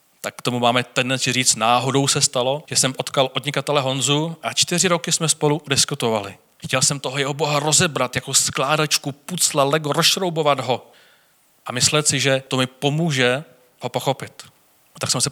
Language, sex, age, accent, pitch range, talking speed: Czech, male, 30-49, native, 125-155 Hz, 170 wpm